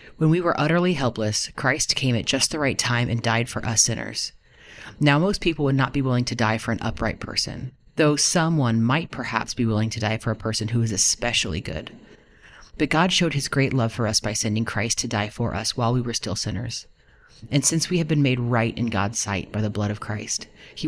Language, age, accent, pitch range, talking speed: English, 30-49, American, 115-140 Hz, 235 wpm